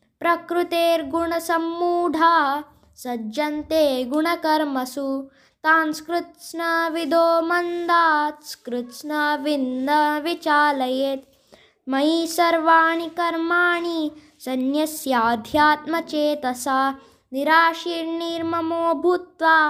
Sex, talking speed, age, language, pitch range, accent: female, 45 wpm, 20-39, Hindi, 275-335 Hz, native